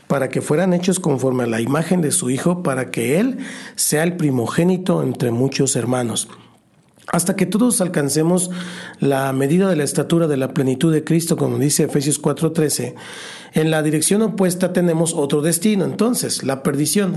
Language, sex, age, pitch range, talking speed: Spanish, male, 50-69, 140-180 Hz, 170 wpm